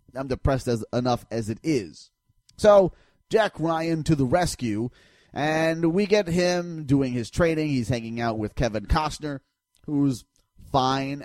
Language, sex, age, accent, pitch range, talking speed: English, male, 30-49, American, 120-165 Hz, 150 wpm